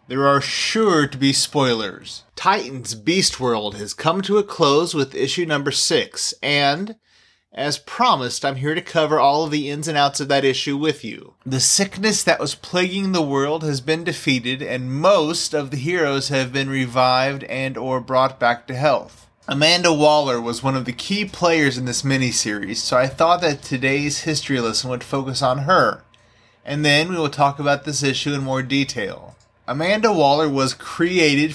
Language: English